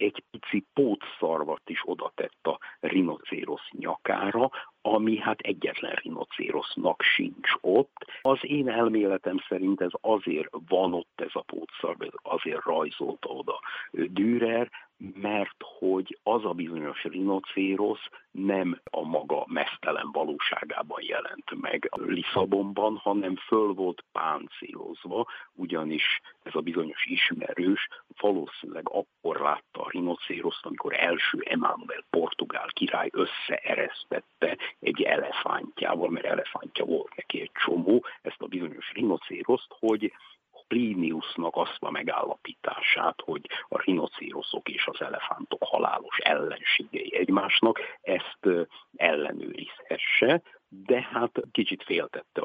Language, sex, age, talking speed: Hungarian, male, 50-69, 110 wpm